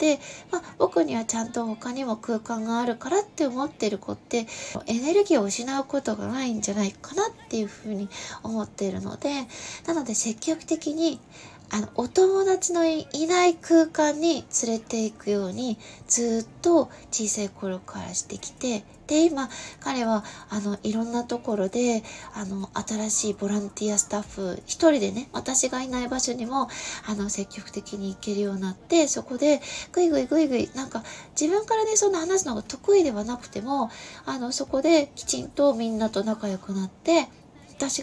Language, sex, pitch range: Japanese, female, 205-305 Hz